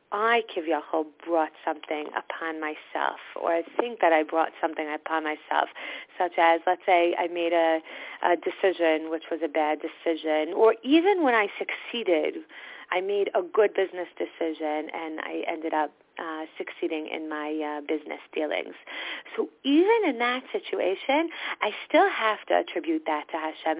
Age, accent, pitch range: 30-49, American, 160-240 Hz